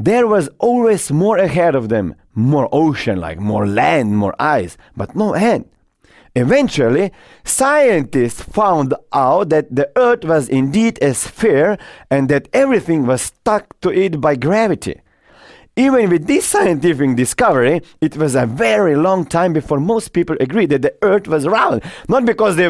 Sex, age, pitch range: male, 40-59, 125-195 Hz